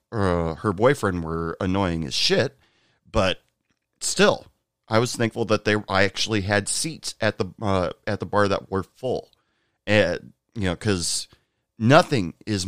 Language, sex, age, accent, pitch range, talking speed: English, male, 40-59, American, 90-115 Hz, 155 wpm